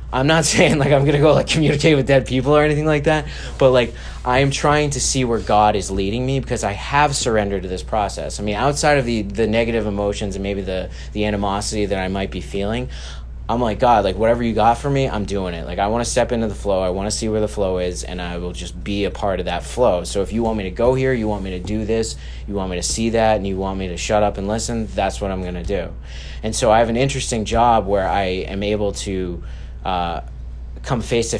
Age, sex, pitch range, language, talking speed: 20-39, male, 90-115 Hz, English, 275 wpm